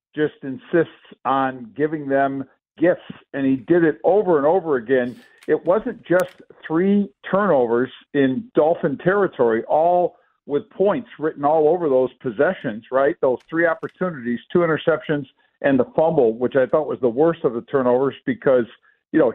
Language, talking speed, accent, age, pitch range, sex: English, 160 wpm, American, 50-69, 140-180 Hz, male